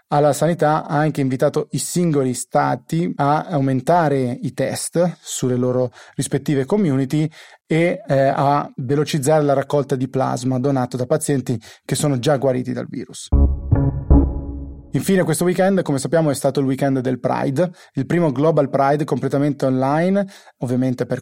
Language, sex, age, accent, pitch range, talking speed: Italian, male, 30-49, native, 130-150 Hz, 145 wpm